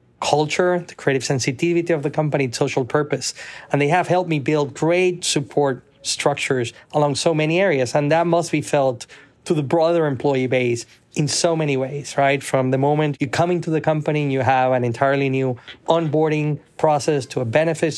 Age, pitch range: 30-49, 130-160 Hz